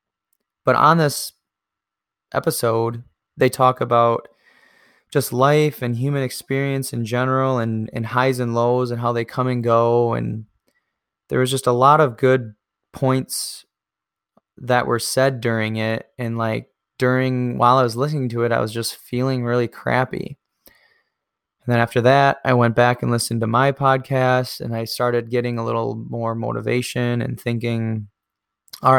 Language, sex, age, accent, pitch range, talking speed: English, male, 20-39, American, 115-130 Hz, 160 wpm